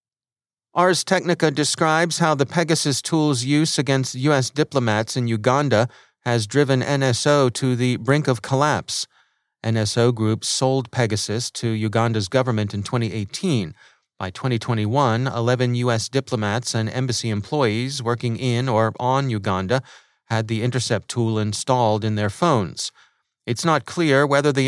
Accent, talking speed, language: American, 135 wpm, English